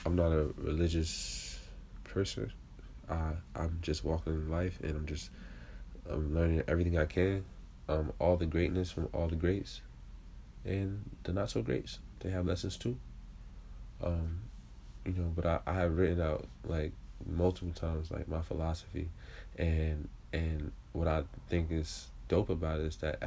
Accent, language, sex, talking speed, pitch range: American, English, male, 160 wpm, 75-90 Hz